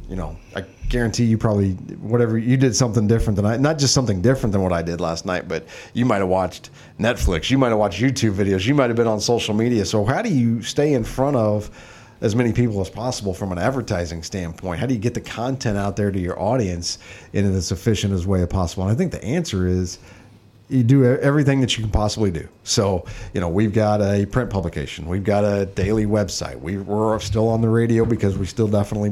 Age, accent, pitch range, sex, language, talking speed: 40-59, American, 100-120 Hz, male, English, 235 wpm